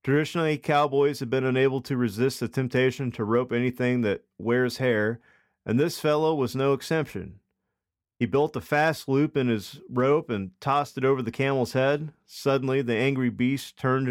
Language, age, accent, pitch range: English, 40-59, American, 115-140 Hz